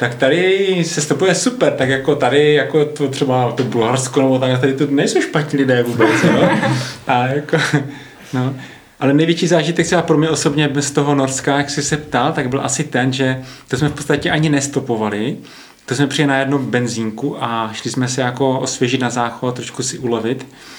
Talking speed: 185 wpm